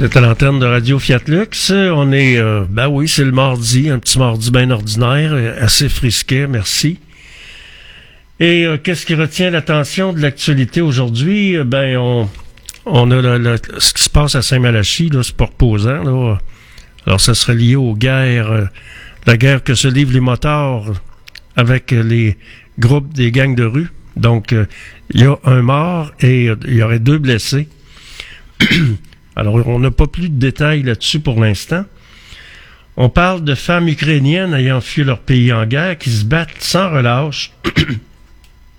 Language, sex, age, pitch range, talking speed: French, male, 60-79, 115-145 Hz, 170 wpm